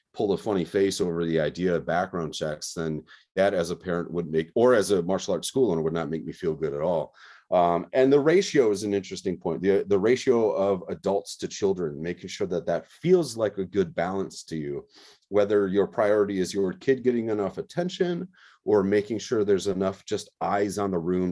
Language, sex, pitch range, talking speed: English, male, 90-125 Hz, 215 wpm